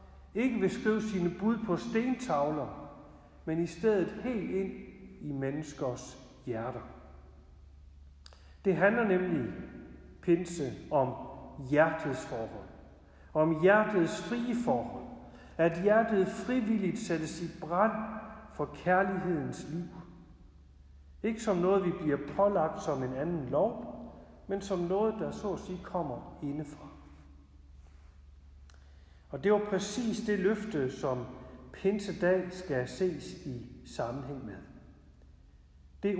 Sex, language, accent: male, Danish, native